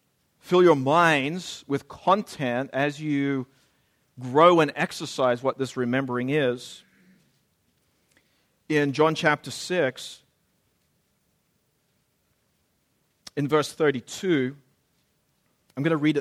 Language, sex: English, male